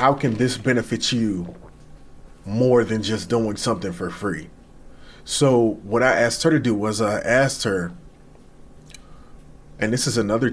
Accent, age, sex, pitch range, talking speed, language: American, 30-49, male, 105-130 Hz, 155 wpm, English